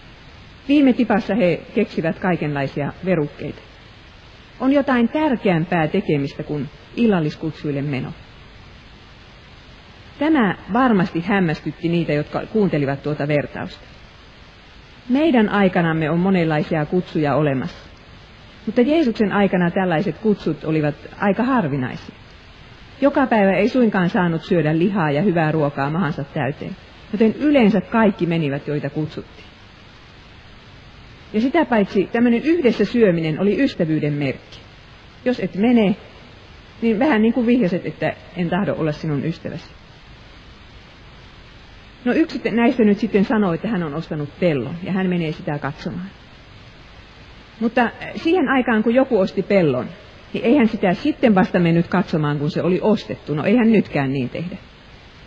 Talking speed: 125 wpm